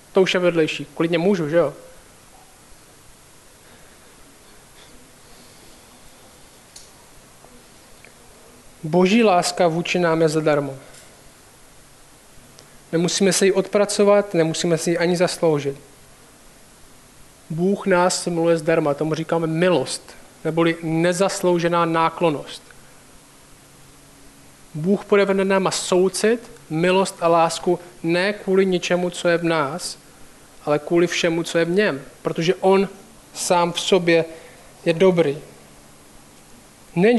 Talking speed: 100 wpm